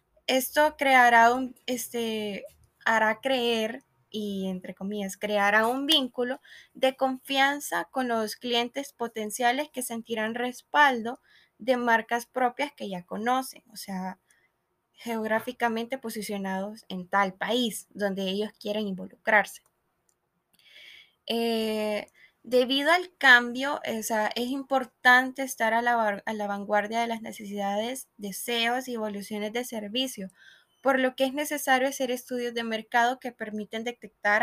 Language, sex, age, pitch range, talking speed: Spanish, female, 10-29, 215-255 Hz, 120 wpm